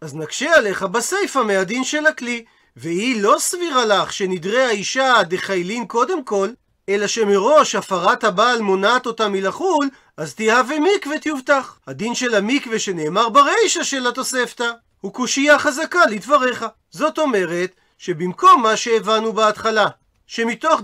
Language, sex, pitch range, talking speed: Hebrew, male, 200-265 Hz, 130 wpm